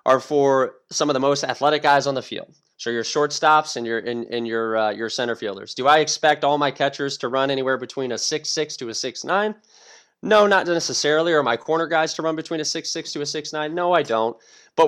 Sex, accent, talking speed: male, American, 240 wpm